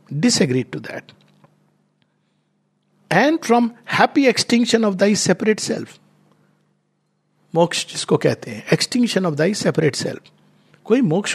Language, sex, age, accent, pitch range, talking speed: Hindi, male, 60-79, native, 145-205 Hz, 115 wpm